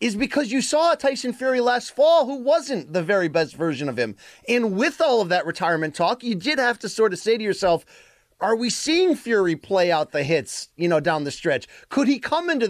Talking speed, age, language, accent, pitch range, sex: 230 wpm, 30-49, English, American, 170-230 Hz, male